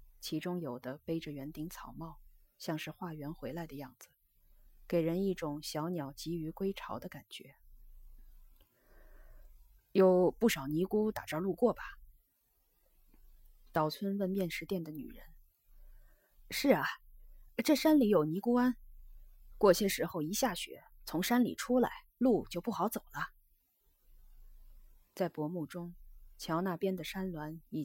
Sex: female